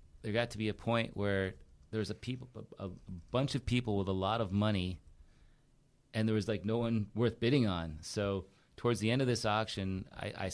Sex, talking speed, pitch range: male, 215 wpm, 90-100 Hz